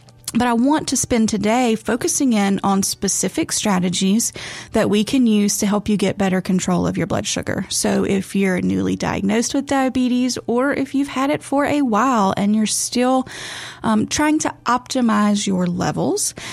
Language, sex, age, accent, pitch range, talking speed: English, female, 30-49, American, 195-245 Hz, 180 wpm